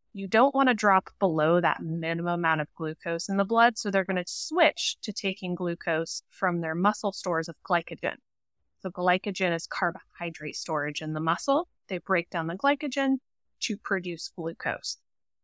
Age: 20-39